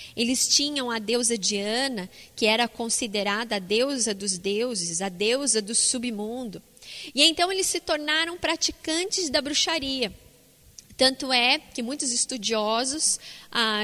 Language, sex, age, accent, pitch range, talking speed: Portuguese, female, 20-39, Brazilian, 230-300 Hz, 125 wpm